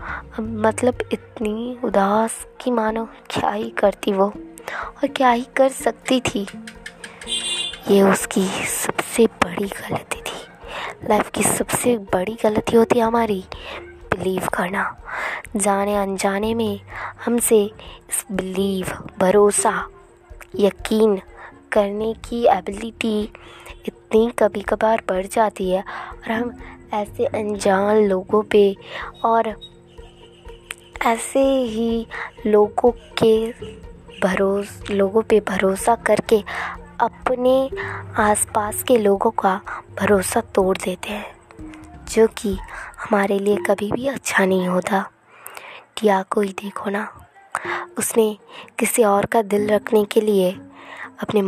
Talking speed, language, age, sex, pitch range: 85 wpm, Bengali, 20-39, female, 195-230 Hz